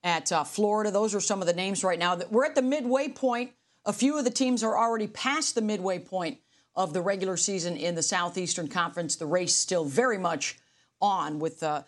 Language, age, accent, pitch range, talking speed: English, 40-59, American, 185-245 Hz, 215 wpm